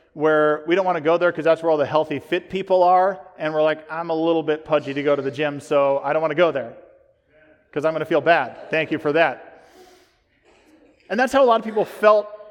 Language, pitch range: English, 150-215 Hz